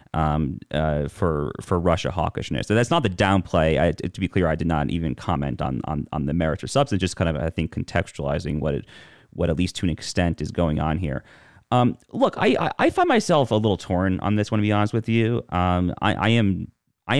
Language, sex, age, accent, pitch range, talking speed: English, male, 30-49, American, 85-105 Hz, 235 wpm